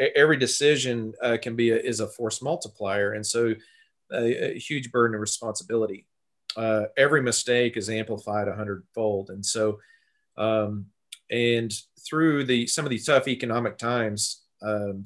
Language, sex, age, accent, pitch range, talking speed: English, male, 30-49, American, 105-125 Hz, 155 wpm